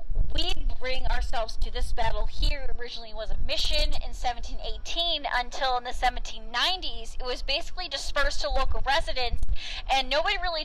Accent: American